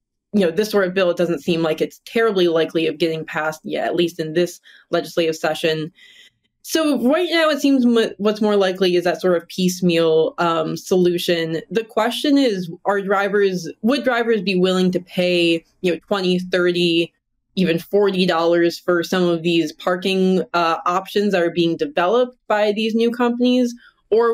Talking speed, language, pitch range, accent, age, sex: 180 wpm, English, 170-205 Hz, American, 20-39, female